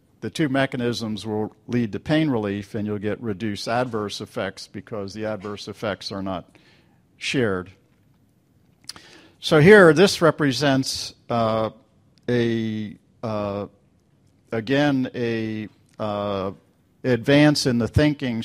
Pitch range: 105-130 Hz